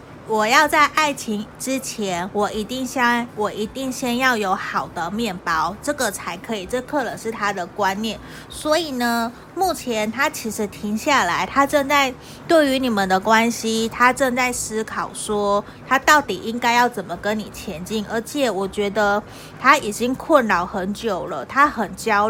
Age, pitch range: 30-49, 200-255 Hz